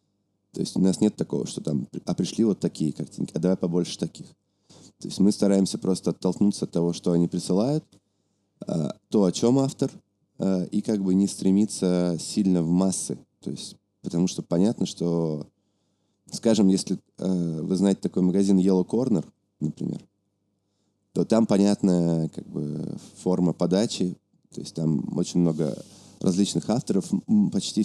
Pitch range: 85-100 Hz